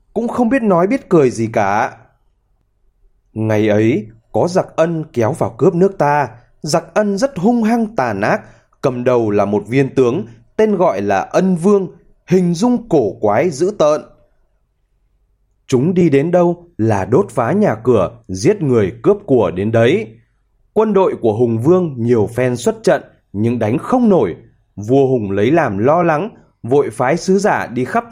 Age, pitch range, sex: 20-39, 115-180 Hz, male